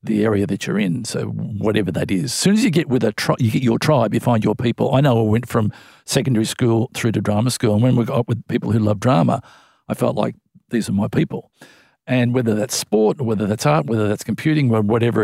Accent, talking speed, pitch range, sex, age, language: Australian, 265 wpm, 110-125 Hz, male, 50-69, English